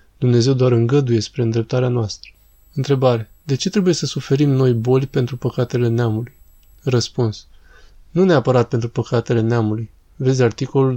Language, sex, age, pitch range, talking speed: Romanian, male, 20-39, 115-135 Hz, 140 wpm